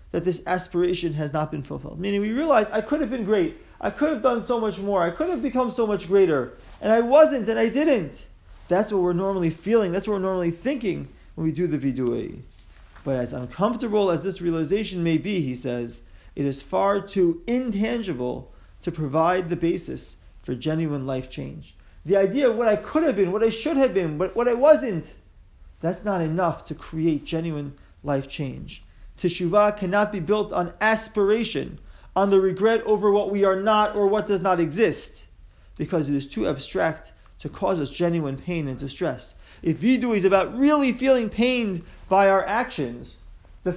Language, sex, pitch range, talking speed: English, male, 160-215 Hz, 190 wpm